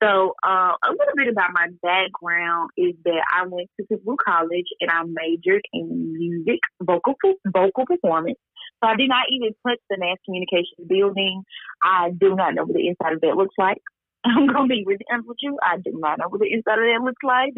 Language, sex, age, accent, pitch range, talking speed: English, female, 30-49, American, 175-275 Hz, 210 wpm